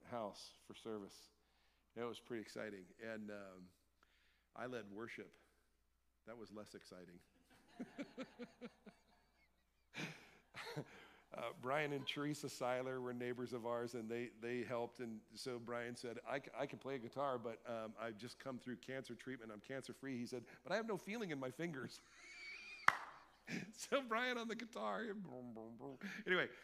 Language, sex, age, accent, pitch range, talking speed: English, male, 50-69, American, 110-145 Hz, 150 wpm